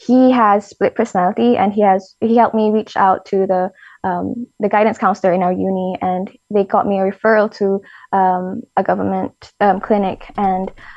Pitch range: 195-240 Hz